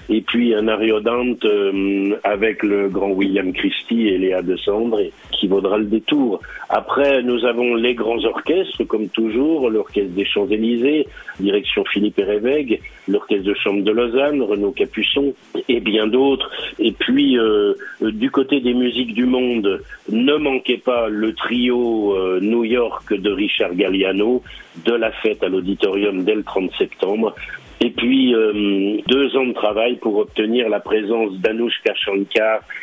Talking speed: 155 wpm